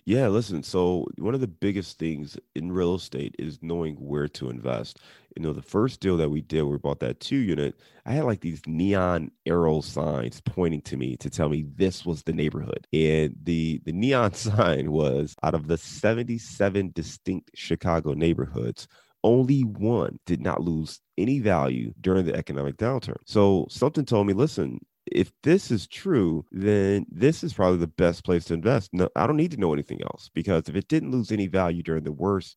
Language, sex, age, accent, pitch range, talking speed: English, male, 30-49, American, 80-100 Hz, 195 wpm